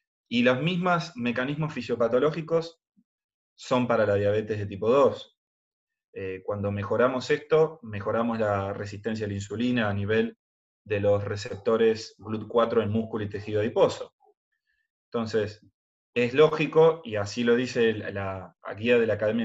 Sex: male